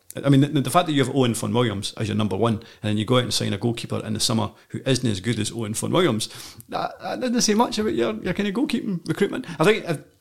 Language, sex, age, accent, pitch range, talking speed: English, male, 40-59, British, 105-135 Hz, 295 wpm